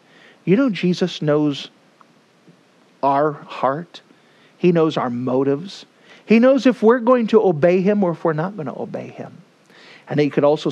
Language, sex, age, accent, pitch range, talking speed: English, male, 50-69, American, 135-190 Hz, 170 wpm